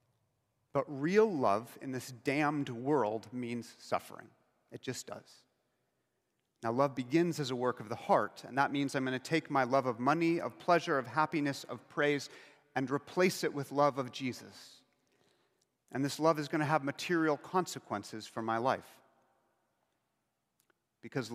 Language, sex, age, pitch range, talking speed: English, male, 40-59, 115-140 Hz, 165 wpm